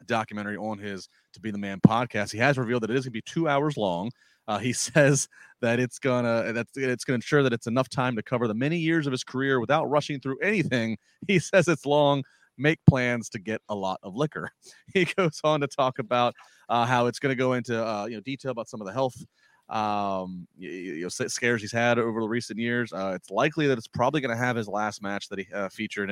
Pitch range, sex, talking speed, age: 105-130 Hz, male, 245 wpm, 30-49